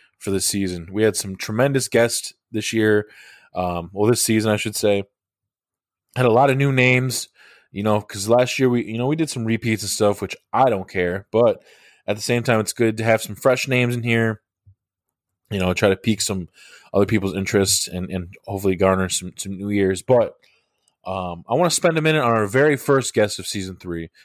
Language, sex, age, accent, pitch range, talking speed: English, male, 20-39, American, 95-120 Hz, 220 wpm